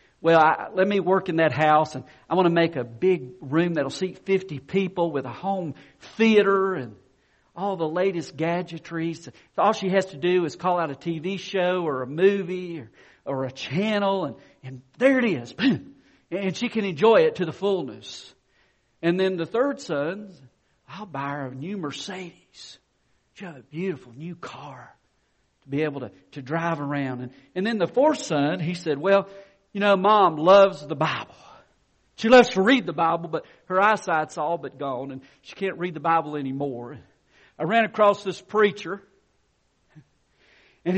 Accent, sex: American, male